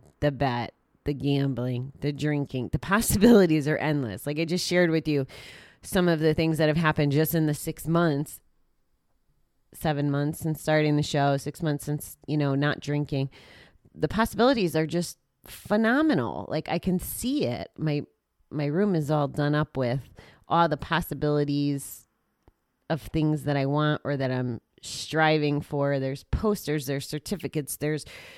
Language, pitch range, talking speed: English, 140-160 Hz, 165 wpm